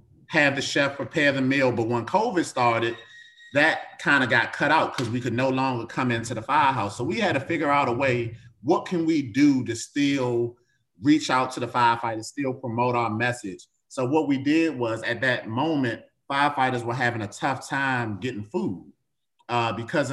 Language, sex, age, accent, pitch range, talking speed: English, male, 30-49, American, 115-135 Hz, 195 wpm